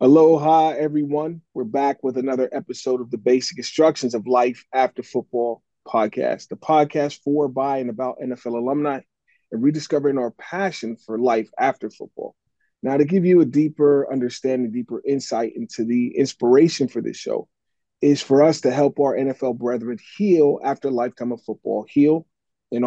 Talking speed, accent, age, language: 165 wpm, American, 30-49, English